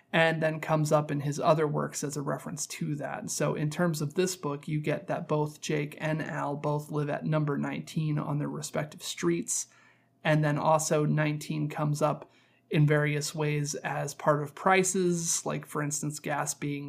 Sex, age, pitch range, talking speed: male, 30-49, 145-160 Hz, 190 wpm